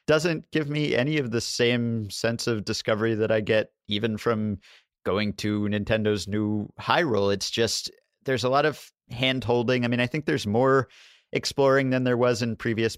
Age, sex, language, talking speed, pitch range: 30-49, male, English, 180 wpm, 95-115 Hz